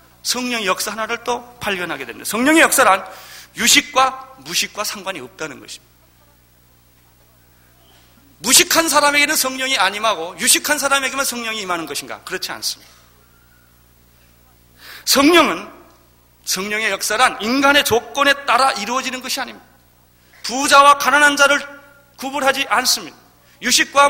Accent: native